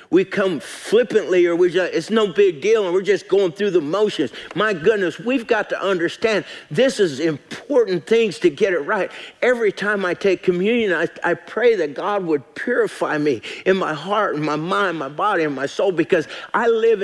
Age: 50-69